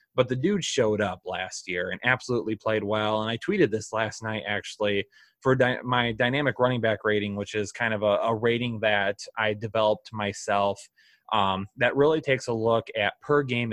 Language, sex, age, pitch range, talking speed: English, male, 20-39, 105-125 Hz, 190 wpm